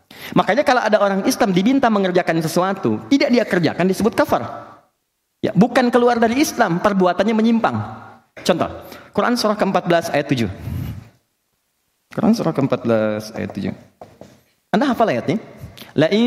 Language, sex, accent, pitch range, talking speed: Indonesian, male, native, 165-255 Hz, 125 wpm